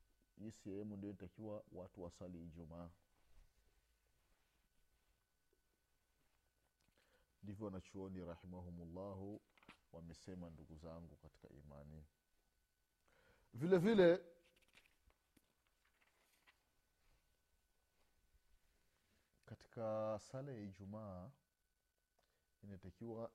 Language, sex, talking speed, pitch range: Swahili, male, 55 wpm, 85-140 Hz